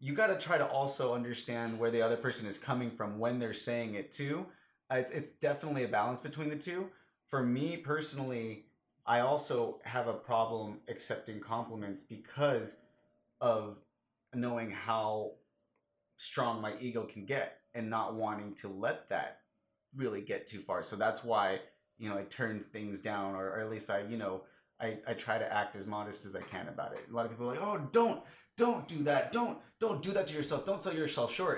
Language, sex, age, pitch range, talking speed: English, male, 30-49, 110-140 Hz, 195 wpm